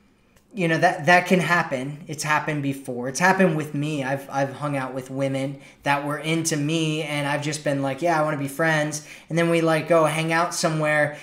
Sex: male